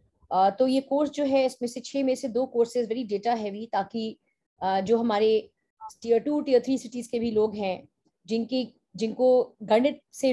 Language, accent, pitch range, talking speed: Hindi, native, 205-245 Hz, 185 wpm